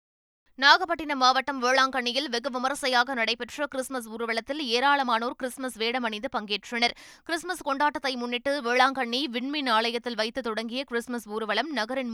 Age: 20-39